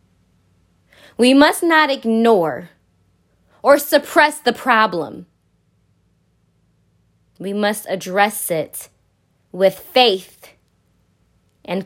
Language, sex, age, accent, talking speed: English, female, 20-39, American, 75 wpm